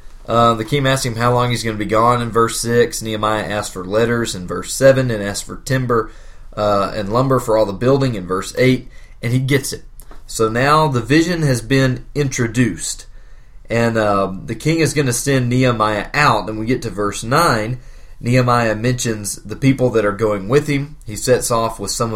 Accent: American